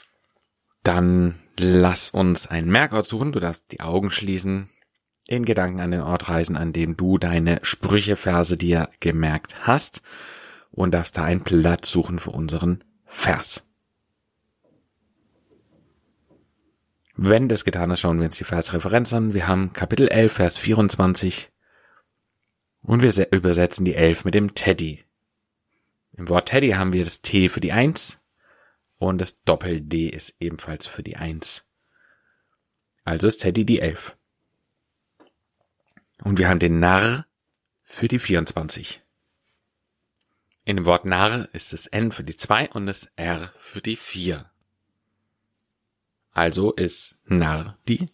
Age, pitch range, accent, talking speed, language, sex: 30-49, 85-105 Hz, German, 140 wpm, German, male